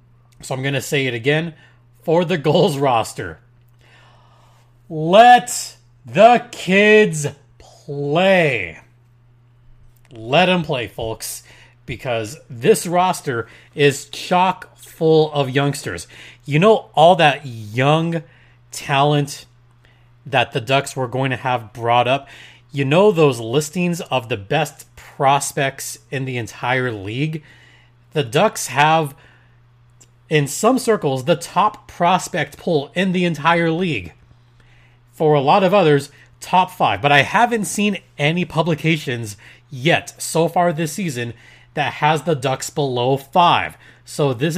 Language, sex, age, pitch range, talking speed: English, male, 30-49, 120-165 Hz, 125 wpm